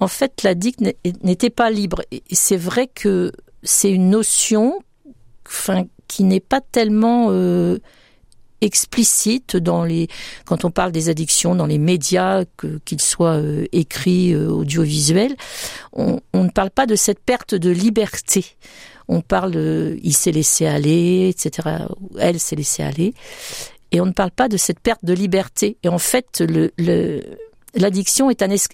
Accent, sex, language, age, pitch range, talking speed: French, female, French, 50-69, 175-215 Hz, 165 wpm